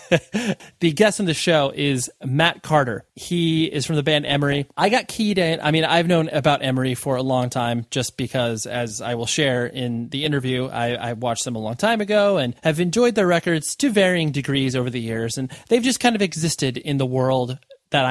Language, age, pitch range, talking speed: English, 30-49, 130-165 Hz, 220 wpm